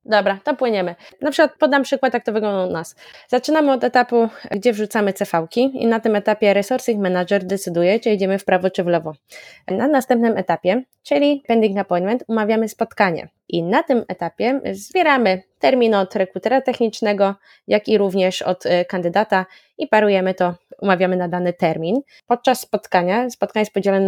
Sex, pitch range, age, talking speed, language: female, 180-230 Hz, 20-39, 165 wpm, Polish